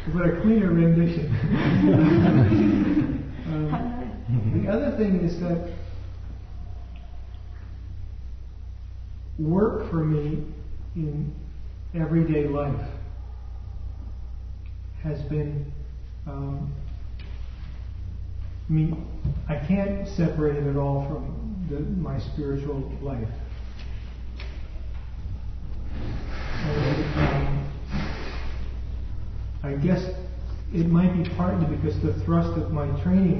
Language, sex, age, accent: English, male, 40-59, American